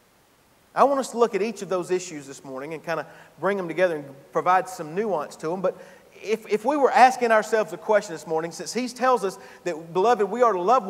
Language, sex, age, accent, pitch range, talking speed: English, male, 40-59, American, 165-230 Hz, 250 wpm